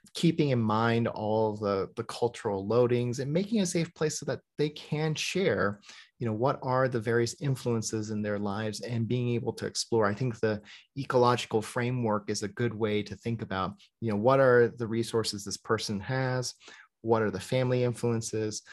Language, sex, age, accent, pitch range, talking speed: English, male, 30-49, American, 110-135 Hz, 190 wpm